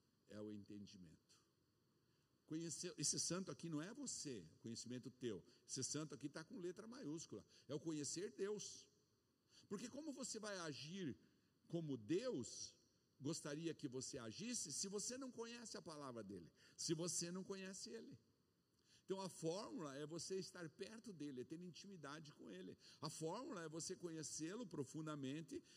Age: 60-79